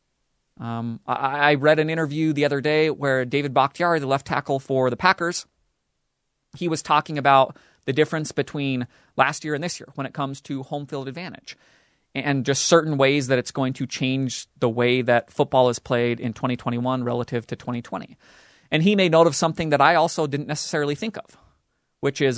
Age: 30-49